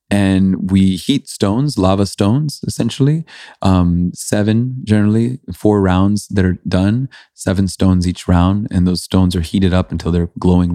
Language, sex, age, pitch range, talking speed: English, male, 30-49, 85-100 Hz, 155 wpm